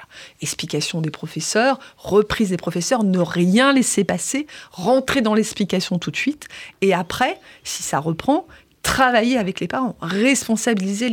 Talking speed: 140 wpm